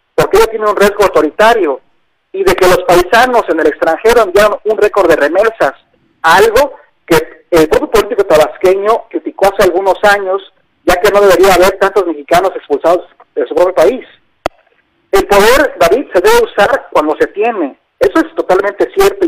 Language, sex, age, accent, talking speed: Spanish, male, 50-69, Mexican, 170 wpm